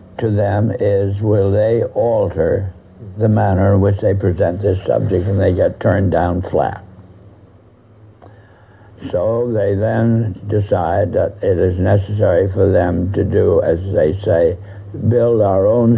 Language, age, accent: English, 60-79, American